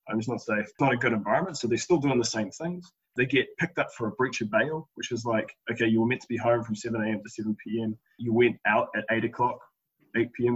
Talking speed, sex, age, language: 280 wpm, male, 20-39, English